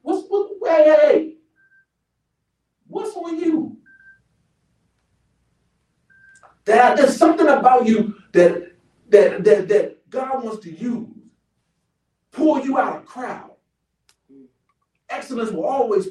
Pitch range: 200-305 Hz